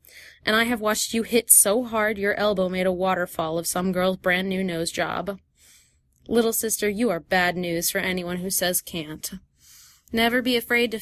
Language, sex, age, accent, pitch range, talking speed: English, female, 20-39, American, 185-220 Hz, 185 wpm